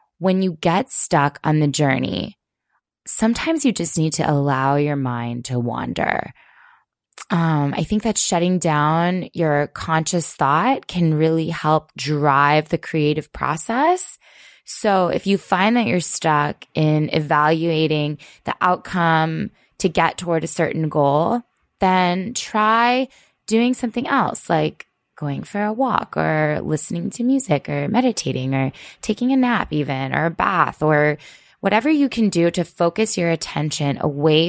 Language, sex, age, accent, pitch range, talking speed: English, female, 20-39, American, 150-190 Hz, 145 wpm